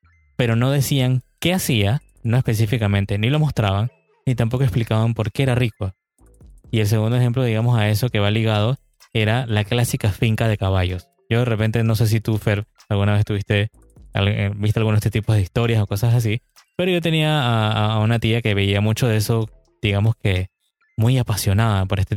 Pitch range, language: 105-125 Hz, Spanish